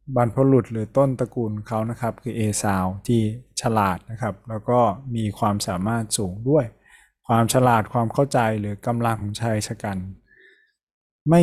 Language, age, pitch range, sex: Thai, 20-39, 105-125 Hz, male